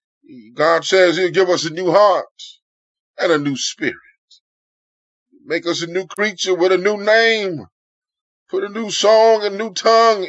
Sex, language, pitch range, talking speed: male, English, 185-235 Hz, 165 wpm